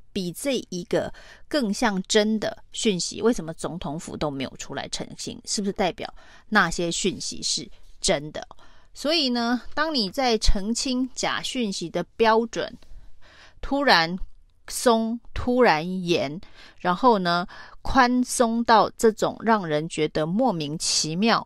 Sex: female